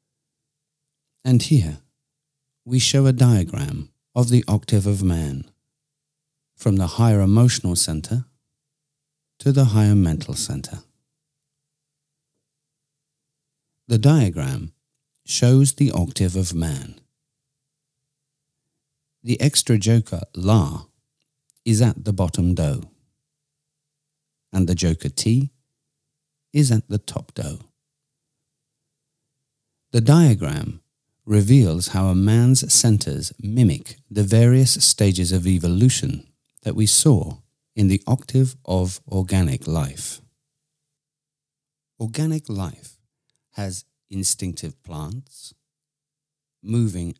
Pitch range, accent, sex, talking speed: 105-145 Hz, British, male, 95 wpm